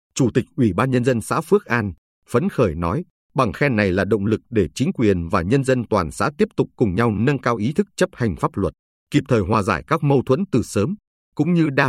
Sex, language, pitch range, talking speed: male, Vietnamese, 105-145 Hz, 250 wpm